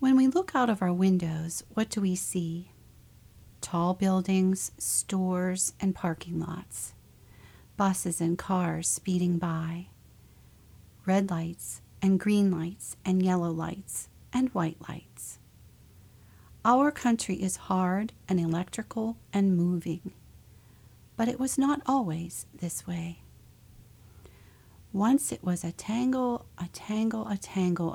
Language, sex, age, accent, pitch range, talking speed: English, female, 40-59, American, 165-195 Hz, 120 wpm